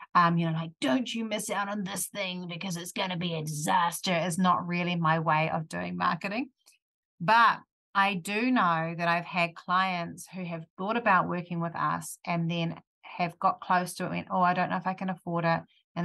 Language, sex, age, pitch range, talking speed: English, female, 30-49, 165-180 Hz, 220 wpm